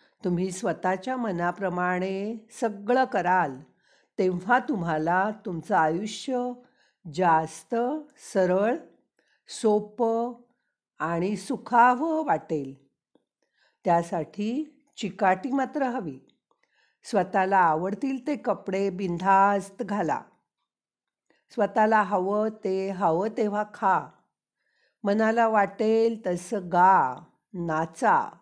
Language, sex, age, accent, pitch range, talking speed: Marathi, female, 50-69, native, 180-235 Hz, 70 wpm